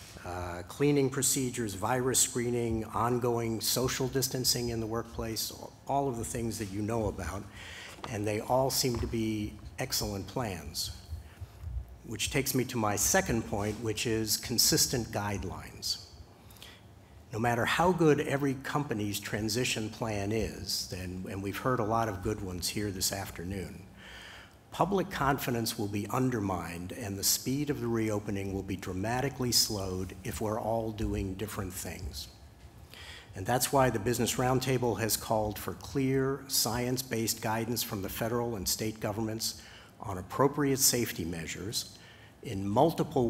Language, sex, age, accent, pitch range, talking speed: English, male, 60-79, American, 100-125 Hz, 145 wpm